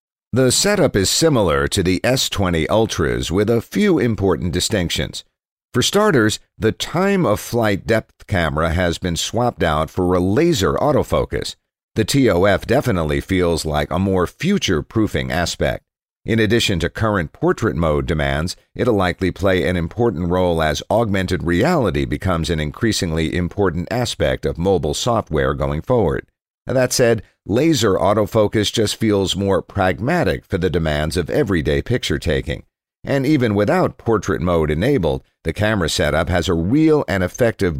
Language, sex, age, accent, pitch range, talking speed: English, male, 50-69, American, 85-115 Hz, 145 wpm